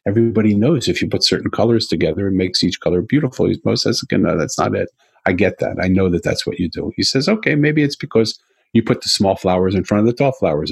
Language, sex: English, male